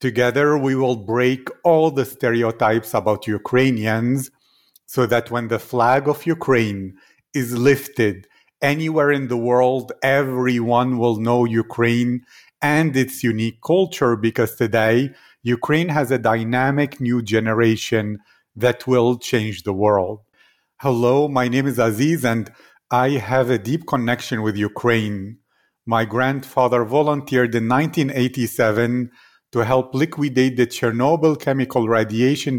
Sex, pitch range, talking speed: male, 115-135 Hz, 125 wpm